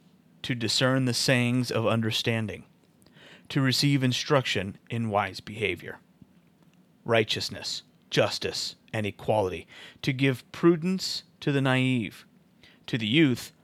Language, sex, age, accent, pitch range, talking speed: English, male, 30-49, American, 105-130 Hz, 110 wpm